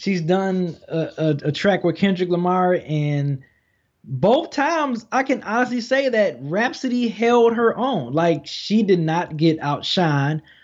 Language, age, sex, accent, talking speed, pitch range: English, 20-39, male, American, 150 wpm, 150-190 Hz